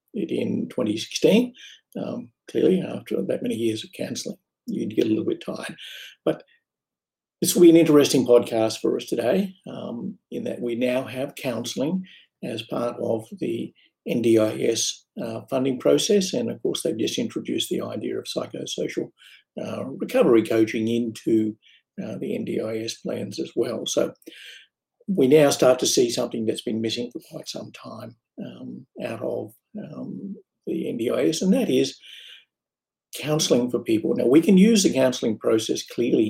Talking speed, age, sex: 155 wpm, 60-79, male